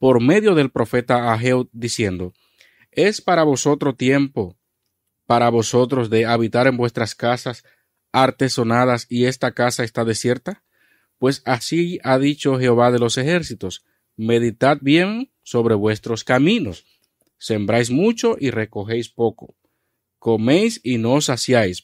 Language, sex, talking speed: Spanish, male, 125 wpm